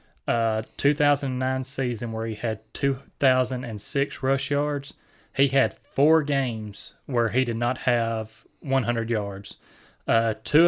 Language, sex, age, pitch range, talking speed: English, male, 30-49, 115-140 Hz, 125 wpm